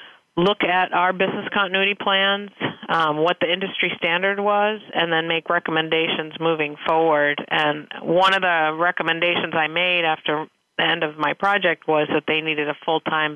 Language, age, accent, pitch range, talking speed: English, 40-59, American, 150-170 Hz, 165 wpm